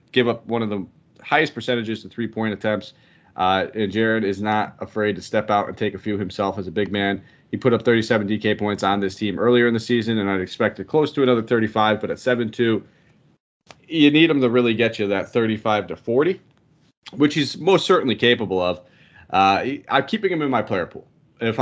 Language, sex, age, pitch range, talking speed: English, male, 30-49, 105-125 Hz, 215 wpm